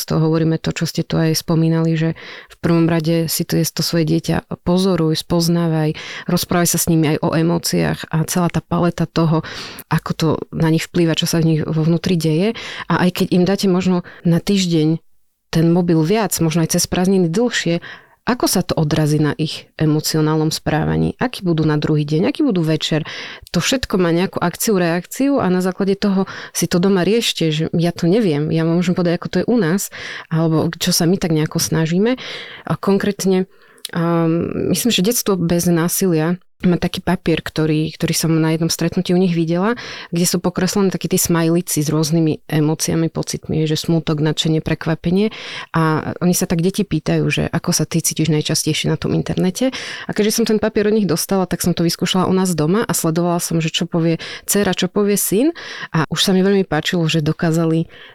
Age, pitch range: 30-49, 160-180 Hz